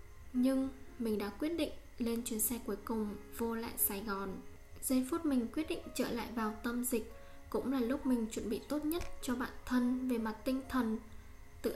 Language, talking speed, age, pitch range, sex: Vietnamese, 205 wpm, 10-29, 220-255 Hz, female